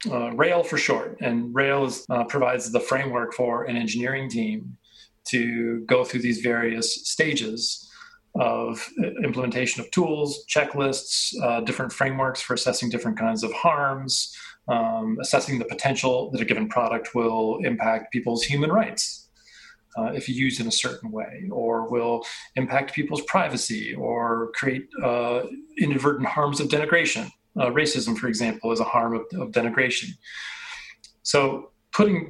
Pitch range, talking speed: 115-150 Hz, 145 wpm